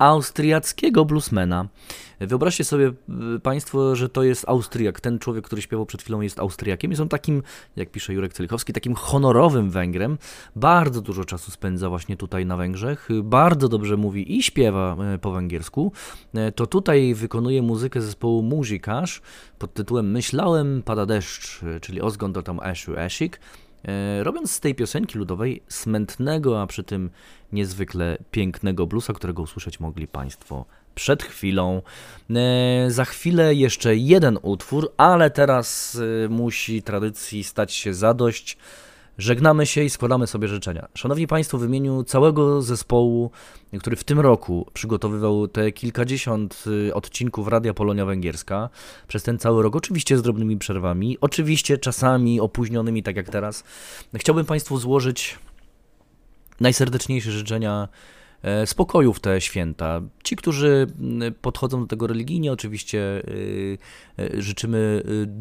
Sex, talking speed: male, 130 wpm